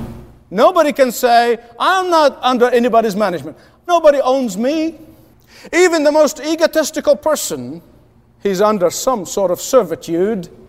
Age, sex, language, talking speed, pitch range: 50-69, male, English, 125 wpm, 210-300 Hz